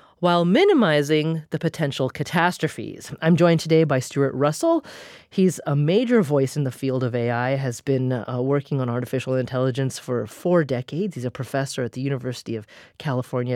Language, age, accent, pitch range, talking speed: English, 30-49, American, 130-170 Hz, 170 wpm